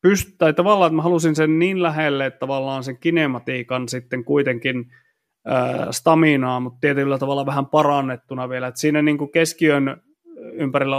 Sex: male